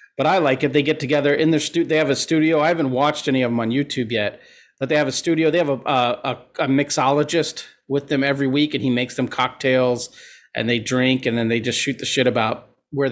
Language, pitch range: English, 120-145 Hz